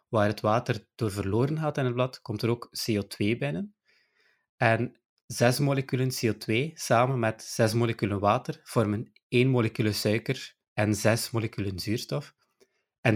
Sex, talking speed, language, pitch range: male, 145 wpm, Dutch, 105-130 Hz